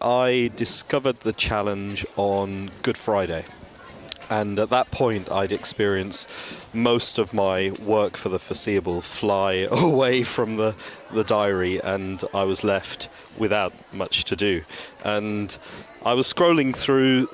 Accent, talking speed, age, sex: British, 135 wpm, 30-49, male